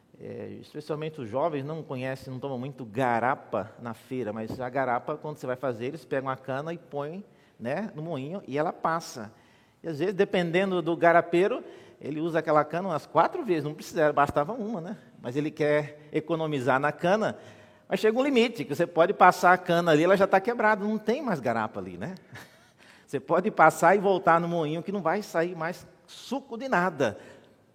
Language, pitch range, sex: Portuguese, 130-175 Hz, male